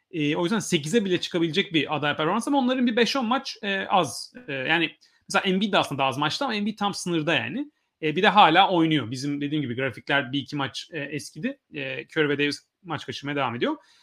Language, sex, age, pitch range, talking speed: Turkish, male, 30-49, 160-240 Hz, 190 wpm